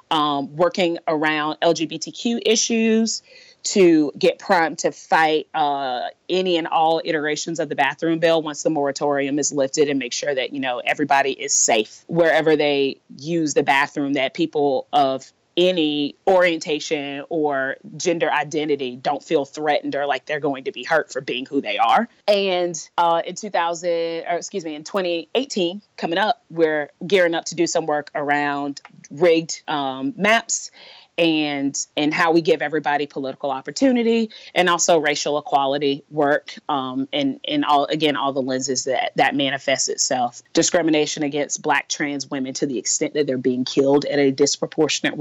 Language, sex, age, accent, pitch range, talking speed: English, female, 30-49, American, 145-175 Hz, 165 wpm